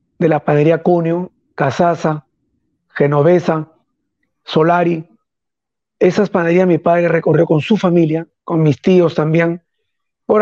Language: Spanish